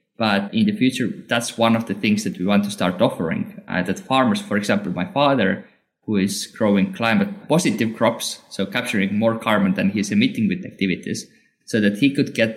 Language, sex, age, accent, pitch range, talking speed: English, male, 20-39, Finnish, 100-130 Hz, 200 wpm